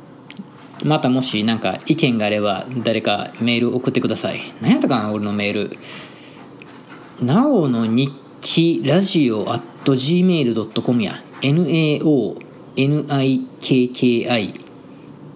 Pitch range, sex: 115-145 Hz, male